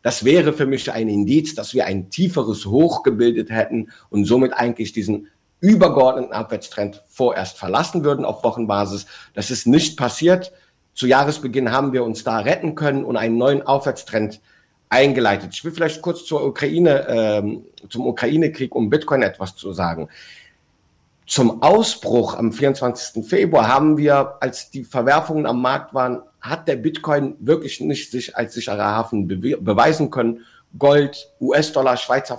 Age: 50-69